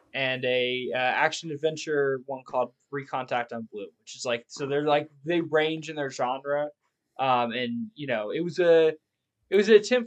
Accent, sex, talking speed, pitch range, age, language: American, male, 190 wpm, 125-160 Hz, 20-39, English